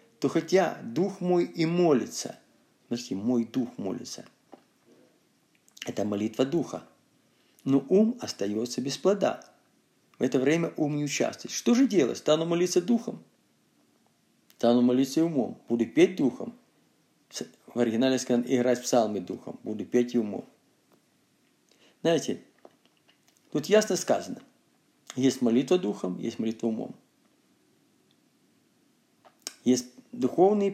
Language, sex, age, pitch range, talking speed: Russian, male, 50-69, 120-165 Hz, 115 wpm